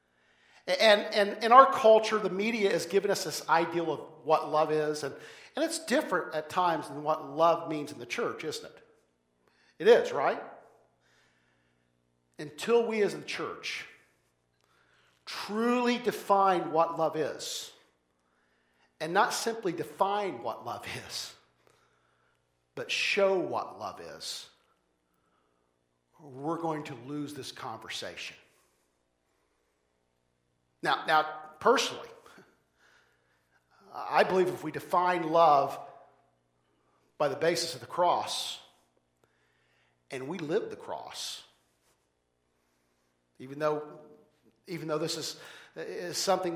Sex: male